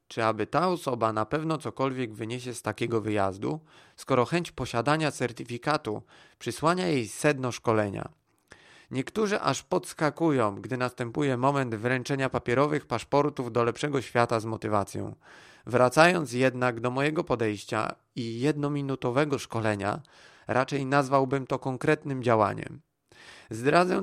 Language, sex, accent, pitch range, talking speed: Polish, male, native, 120-155 Hz, 115 wpm